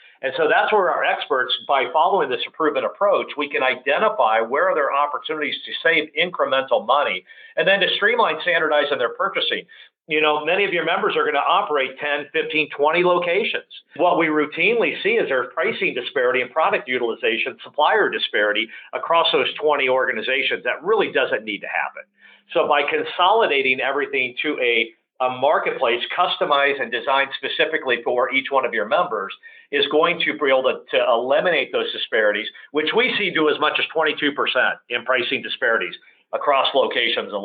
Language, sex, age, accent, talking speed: English, male, 50-69, American, 175 wpm